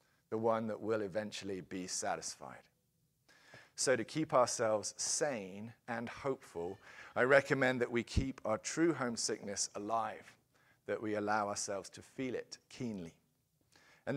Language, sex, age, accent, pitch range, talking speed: English, male, 40-59, British, 105-140 Hz, 135 wpm